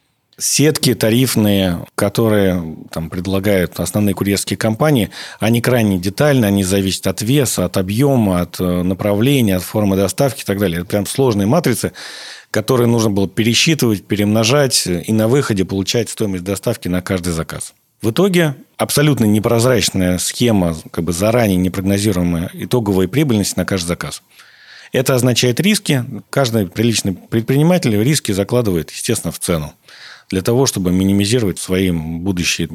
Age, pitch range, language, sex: 40-59, 95-125 Hz, Russian, male